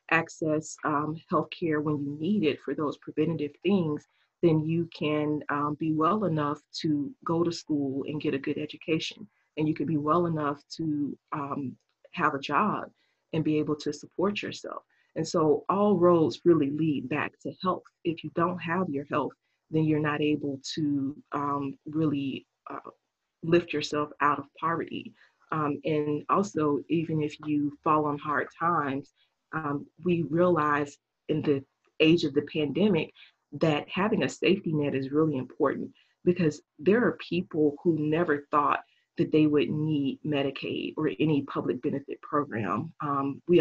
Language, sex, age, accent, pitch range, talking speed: English, female, 30-49, American, 145-165 Hz, 165 wpm